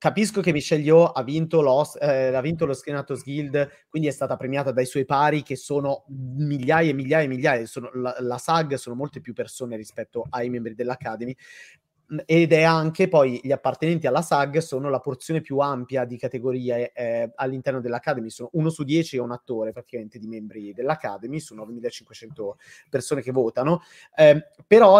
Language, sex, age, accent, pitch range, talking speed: Italian, male, 30-49, native, 130-165 Hz, 170 wpm